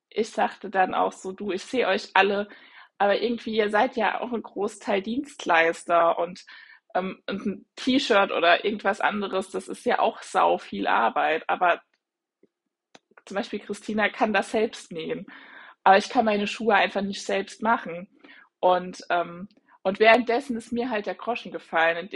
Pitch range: 195-235 Hz